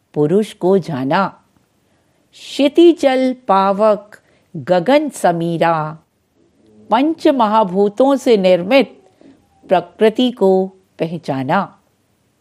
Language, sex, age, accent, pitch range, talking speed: Hindi, female, 50-69, native, 165-265 Hz, 70 wpm